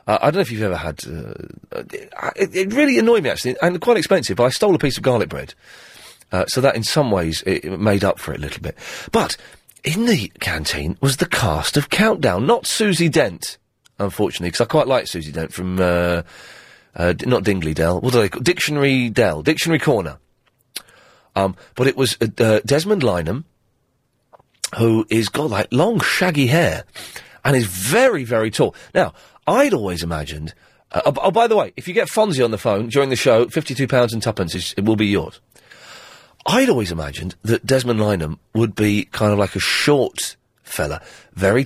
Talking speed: 195 wpm